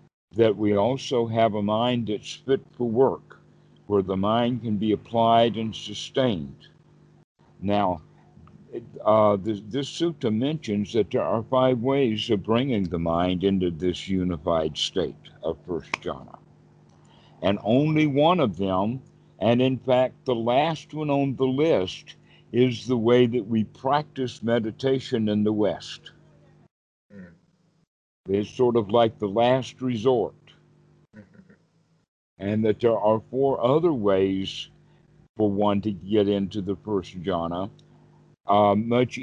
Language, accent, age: English, American, 60-79